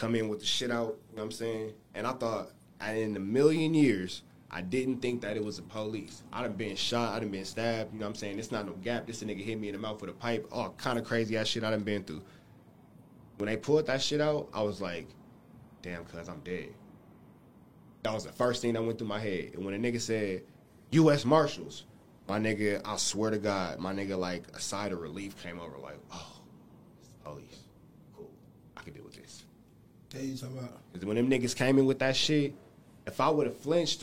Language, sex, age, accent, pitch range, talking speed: English, male, 20-39, American, 100-125 Hz, 225 wpm